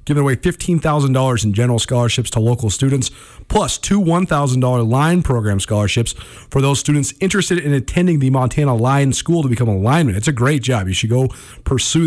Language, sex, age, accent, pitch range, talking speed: English, male, 40-59, American, 120-160 Hz, 185 wpm